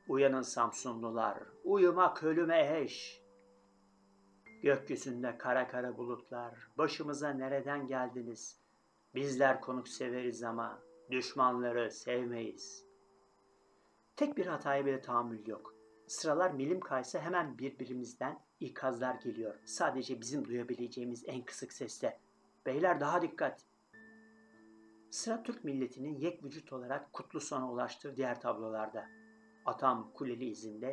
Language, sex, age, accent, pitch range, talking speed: Turkish, male, 60-79, native, 120-145 Hz, 105 wpm